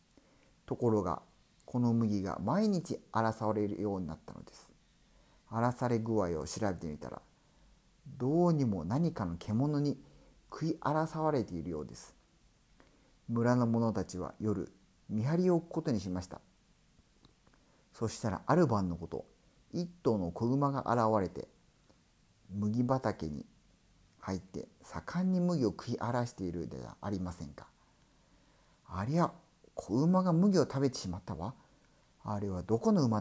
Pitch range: 95-145 Hz